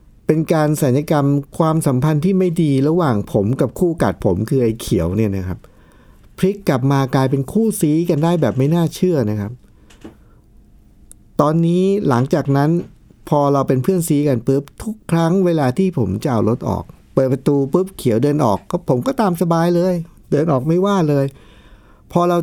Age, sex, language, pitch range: 60-79, male, Thai, 110-160 Hz